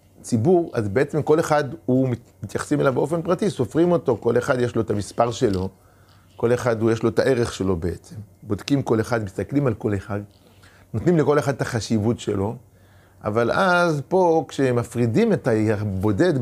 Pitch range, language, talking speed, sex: 100-145 Hz, Hebrew, 170 wpm, male